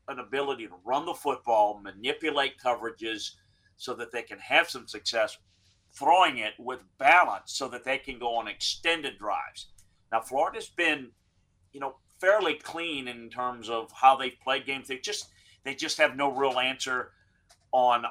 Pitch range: 105-140 Hz